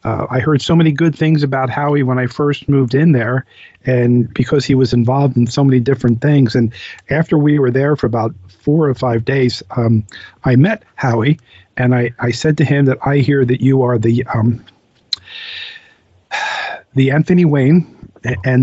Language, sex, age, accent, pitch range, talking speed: English, male, 50-69, American, 120-145 Hz, 185 wpm